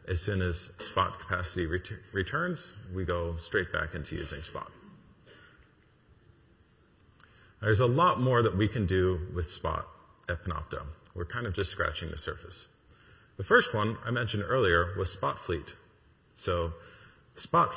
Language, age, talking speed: English, 40-59, 150 wpm